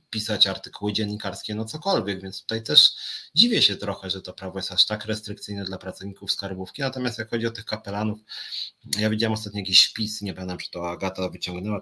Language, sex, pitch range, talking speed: Polish, male, 90-105 Hz, 195 wpm